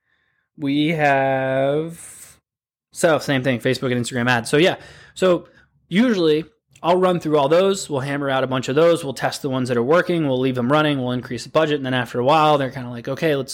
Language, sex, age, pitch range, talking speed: English, male, 20-39, 130-160 Hz, 225 wpm